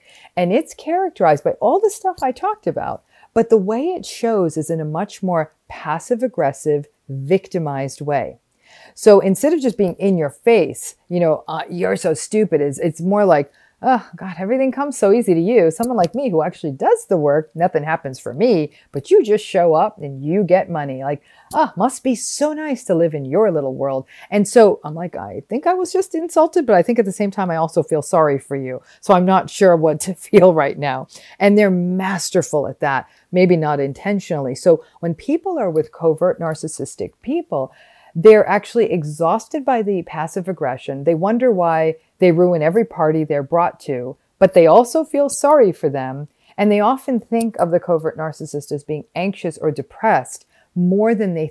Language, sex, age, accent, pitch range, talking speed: English, female, 40-59, American, 155-220 Hz, 200 wpm